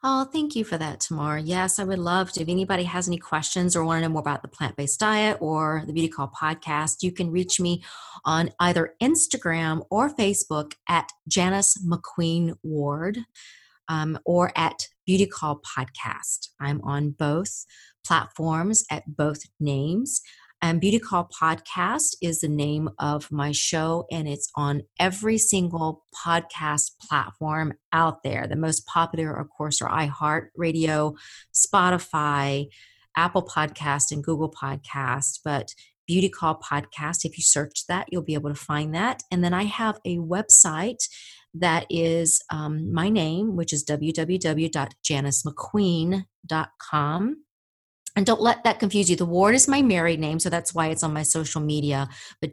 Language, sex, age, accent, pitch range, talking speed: English, female, 30-49, American, 150-180 Hz, 160 wpm